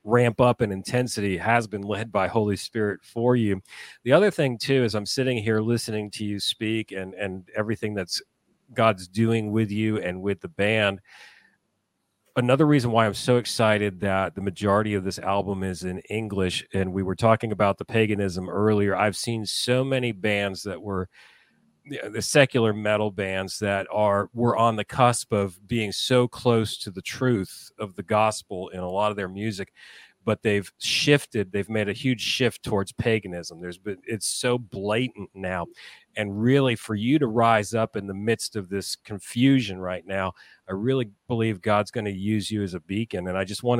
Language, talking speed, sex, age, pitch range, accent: English, 190 wpm, male, 40-59, 100-115 Hz, American